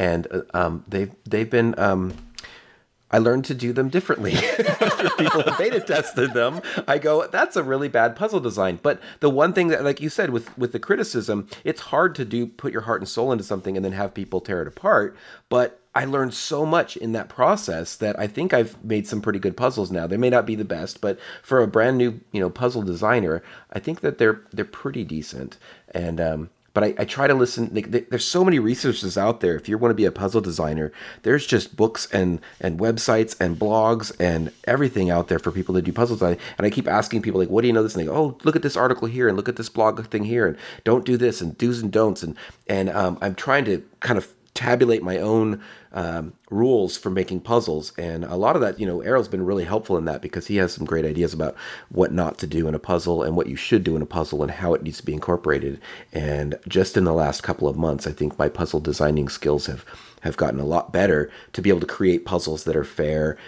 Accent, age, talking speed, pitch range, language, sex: American, 40-59, 245 wpm, 80-120 Hz, English, male